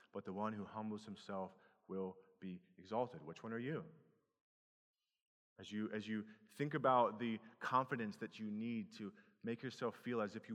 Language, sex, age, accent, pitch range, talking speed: English, male, 30-49, American, 110-130 Hz, 170 wpm